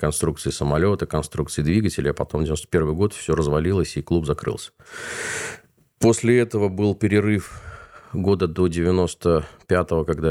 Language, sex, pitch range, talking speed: Russian, male, 75-90 Hz, 135 wpm